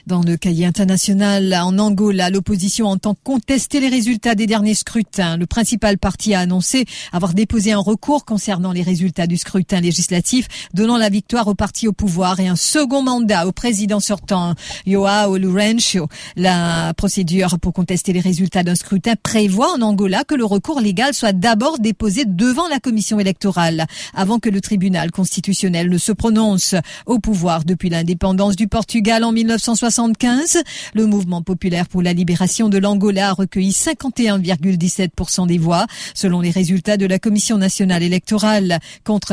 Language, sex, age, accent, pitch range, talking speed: English, female, 50-69, French, 185-220 Hz, 160 wpm